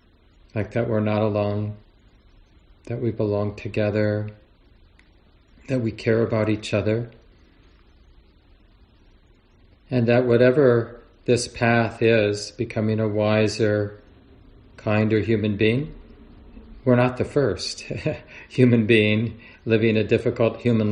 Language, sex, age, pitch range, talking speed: English, male, 40-59, 95-115 Hz, 105 wpm